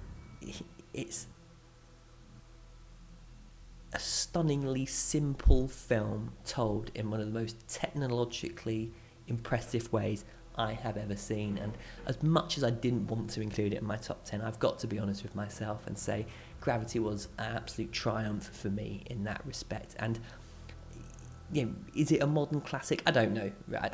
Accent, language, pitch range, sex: British, English, 105-120 Hz, male